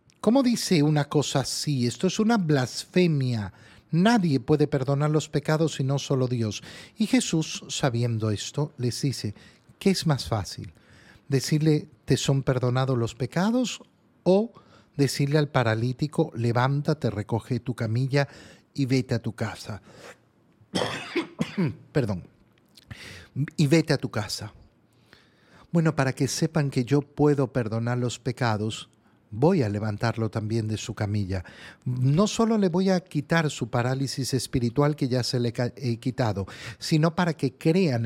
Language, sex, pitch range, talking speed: Spanish, male, 115-150 Hz, 140 wpm